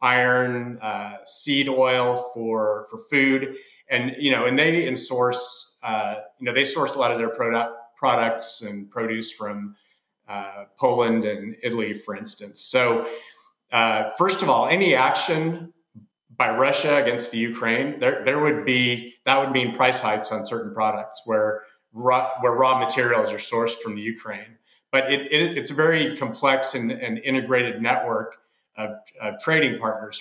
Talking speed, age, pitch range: 165 wpm, 30-49, 110-130 Hz